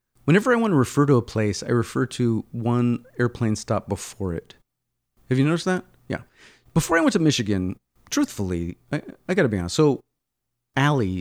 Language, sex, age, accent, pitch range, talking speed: English, male, 40-59, American, 100-140 Hz, 180 wpm